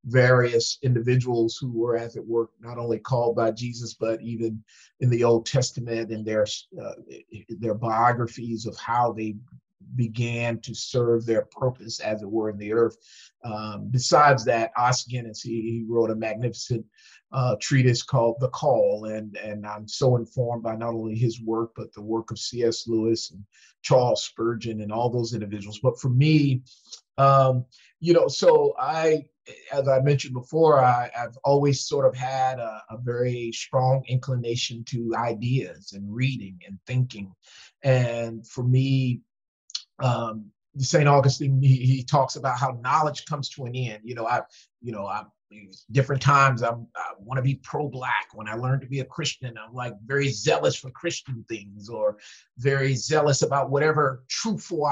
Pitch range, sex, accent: 115-135 Hz, male, American